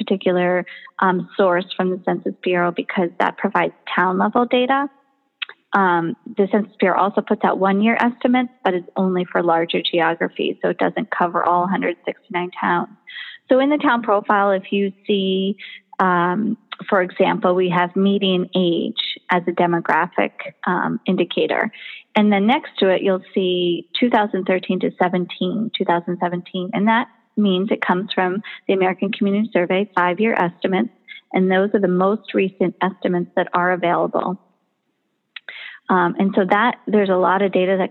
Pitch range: 180-220 Hz